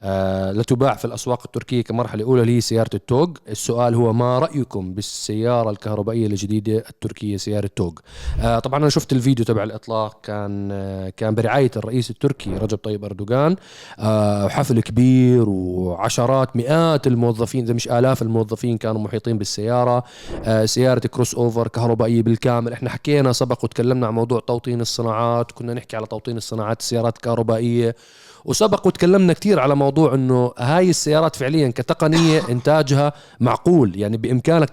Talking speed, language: 145 wpm, Arabic